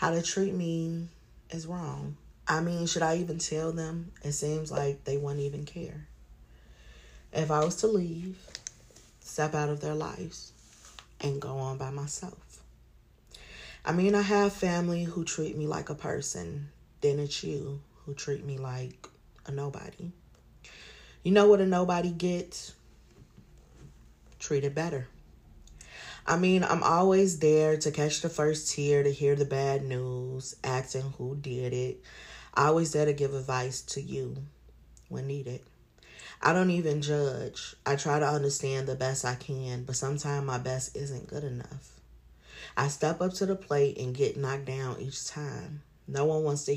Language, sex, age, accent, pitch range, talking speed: English, female, 30-49, American, 130-165 Hz, 165 wpm